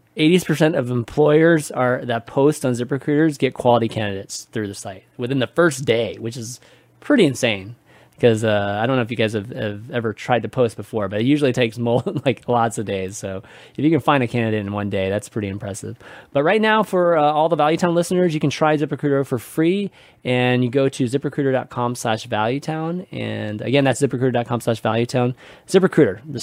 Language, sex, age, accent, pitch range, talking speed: English, male, 20-39, American, 110-150 Hz, 200 wpm